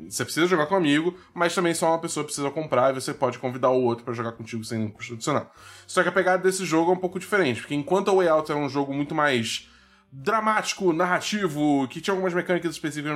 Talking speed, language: 235 wpm, Portuguese